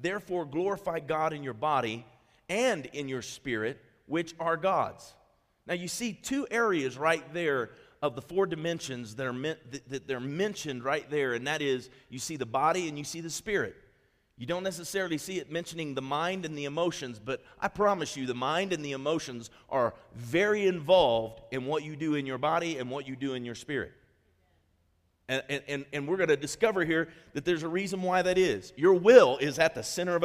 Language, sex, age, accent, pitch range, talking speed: English, male, 40-59, American, 125-180 Hz, 205 wpm